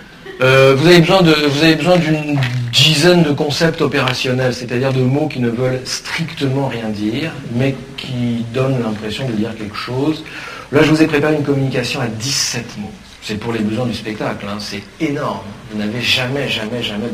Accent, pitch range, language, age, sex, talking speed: French, 110-150 Hz, French, 40-59, male, 190 wpm